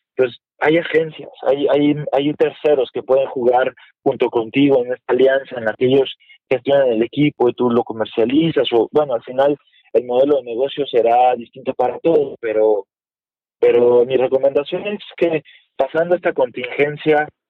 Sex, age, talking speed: male, 20-39, 160 wpm